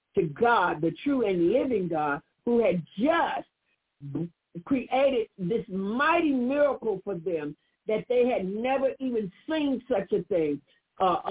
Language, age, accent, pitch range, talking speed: English, 50-69, American, 185-260 Hz, 145 wpm